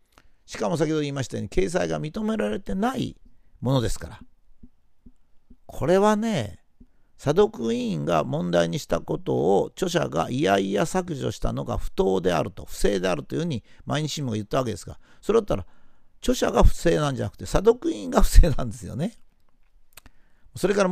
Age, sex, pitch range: 50-69, male, 110-170 Hz